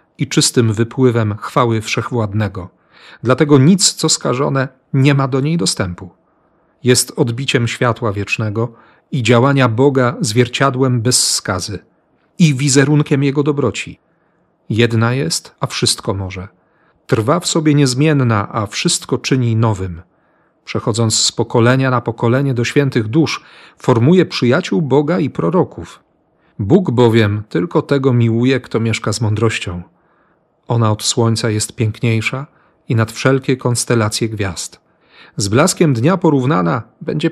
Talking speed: 125 wpm